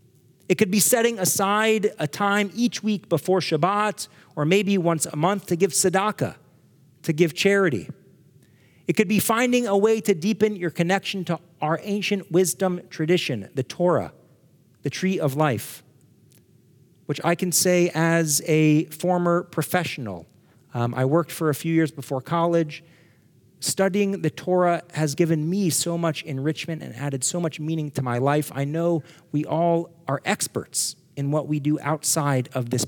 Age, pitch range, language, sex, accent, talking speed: 40-59, 140-180 Hz, English, male, American, 165 wpm